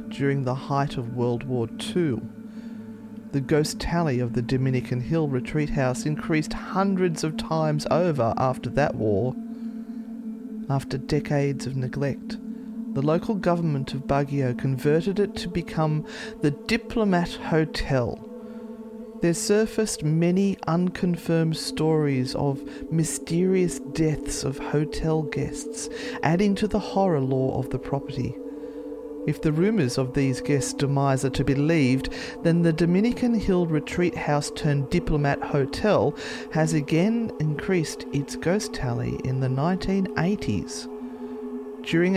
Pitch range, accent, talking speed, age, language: 135-195 Hz, Australian, 125 wpm, 40-59, English